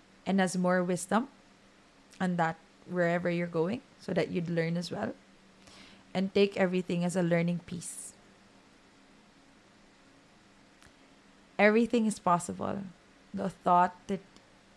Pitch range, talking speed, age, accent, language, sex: 180-200 Hz, 115 wpm, 20-39, Filipino, English, female